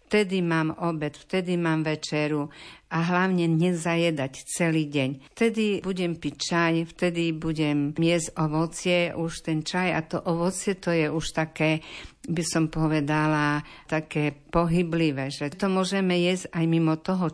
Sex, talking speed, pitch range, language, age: female, 140 wpm, 155-180 Hz, Slovak, 50-69